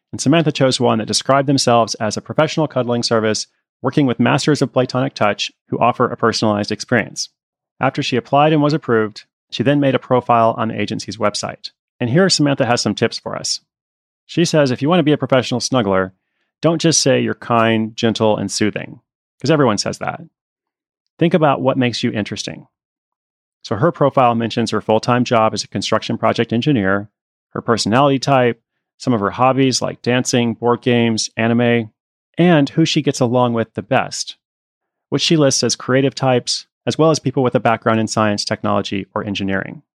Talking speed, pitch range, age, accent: 185 wpm, 110-140 Hz, 30-49, American